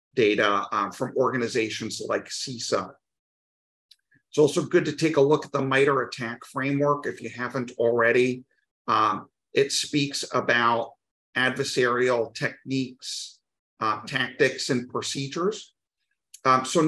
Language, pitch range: English, 120-145 Hz